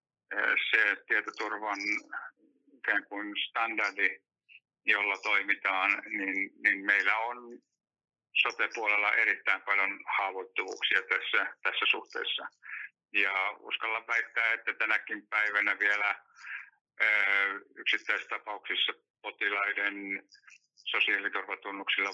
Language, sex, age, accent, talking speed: Finnish, male, 60-79, native, 75 wpm